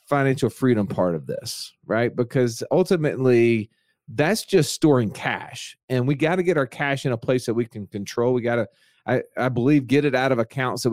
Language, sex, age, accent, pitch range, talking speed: English, male, 40-59, American, 115-140 Hz, 215 wpm